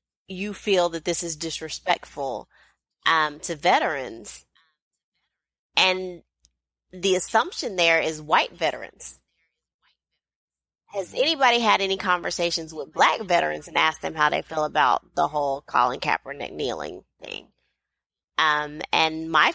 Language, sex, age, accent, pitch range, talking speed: English, female, 30-49, American, 160-195 Hz, 125 wpm